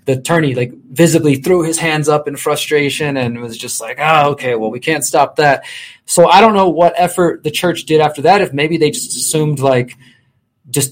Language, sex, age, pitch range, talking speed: English, male, 20-39, 130-150 Hz, 215 wpm